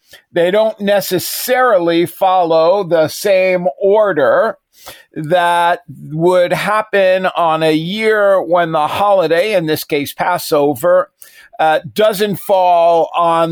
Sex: male